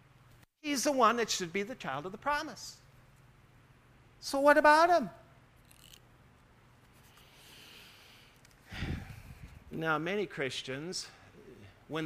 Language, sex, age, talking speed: English, male, 50-69, 95 wpm